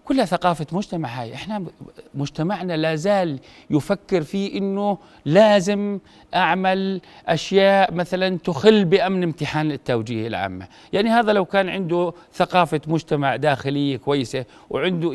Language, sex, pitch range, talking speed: Arabic, male, 150-195 Hz, 120 wpm